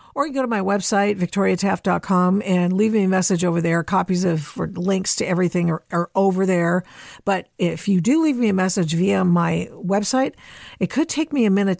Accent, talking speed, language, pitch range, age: American, 210 wpm, English, 180-235 Hz, 50-69